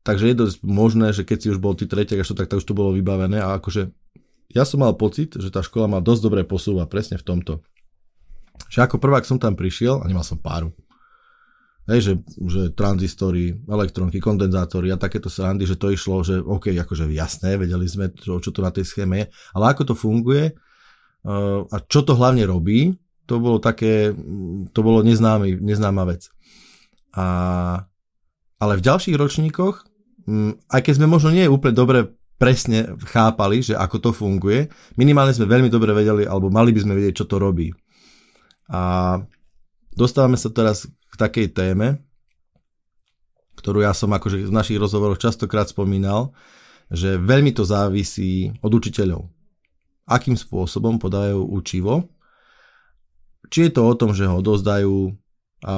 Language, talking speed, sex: Slovak, 160 wpm, male